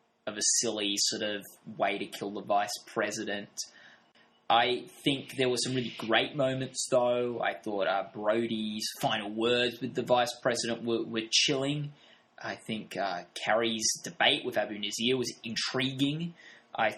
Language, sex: English, male